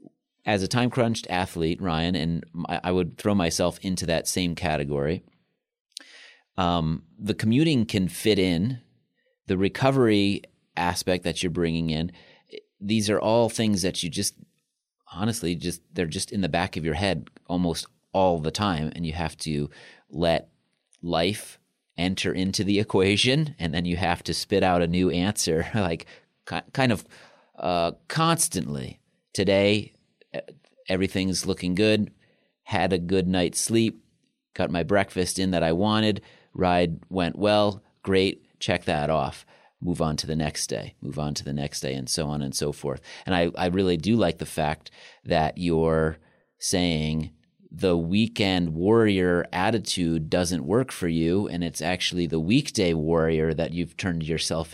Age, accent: 30-49, American